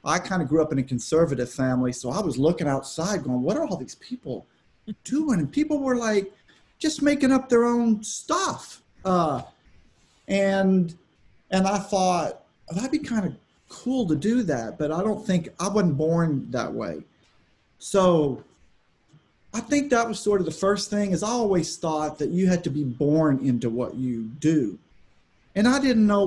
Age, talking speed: 40-59, 185 wpm